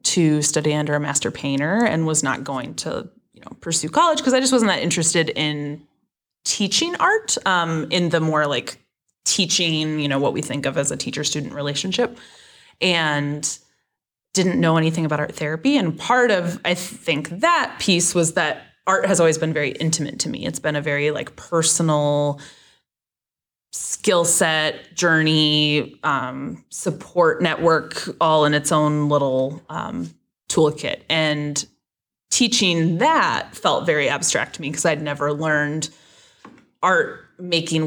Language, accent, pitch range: English, American, 145-175 Hz